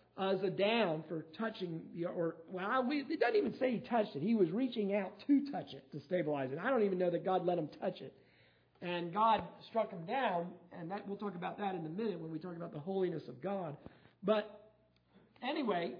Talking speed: 220 wpm